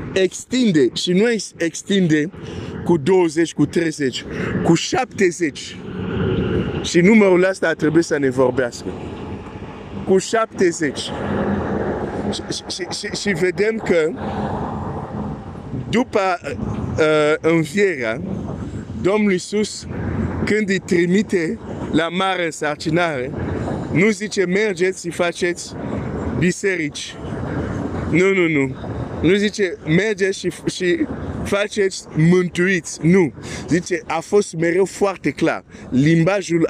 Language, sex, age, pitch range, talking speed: Romanian, male, 50-69, 150-190 Hz, 100 wpm